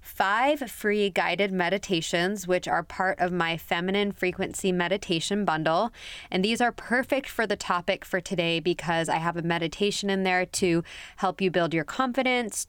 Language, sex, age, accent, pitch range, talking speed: English, female, 20-39, American, 175-200 Hz, 165 wpm